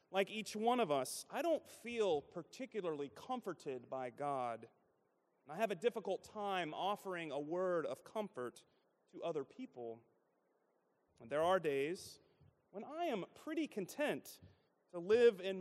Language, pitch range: English, 145-220 Hz